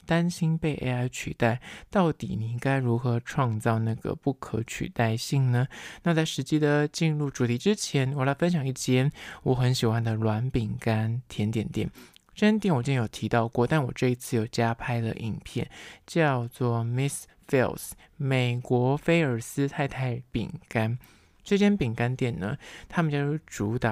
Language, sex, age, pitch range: Chinese, male, 20-39, 115-145 Hz